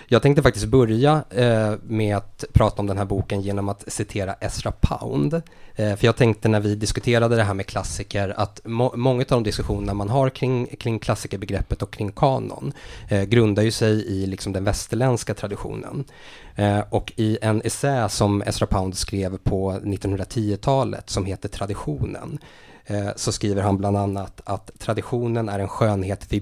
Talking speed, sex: 175 wpm, male